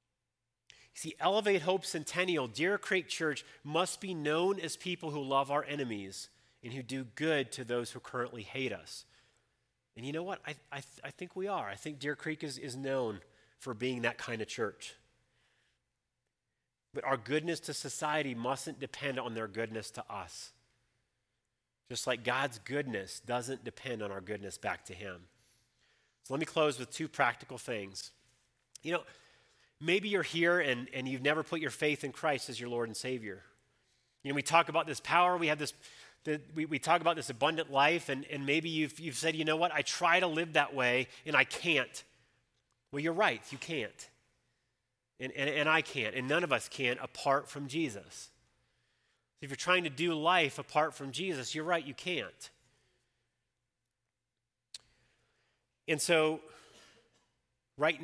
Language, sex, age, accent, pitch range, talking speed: English, male, 30-49, American, 120-155 Hz, 175 wpm